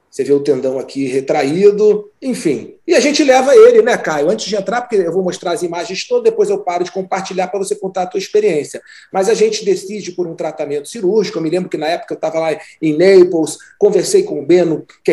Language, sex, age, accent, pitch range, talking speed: Portuguese, male, 40-59, Brazilian, 160-245 Hz, 235 wpm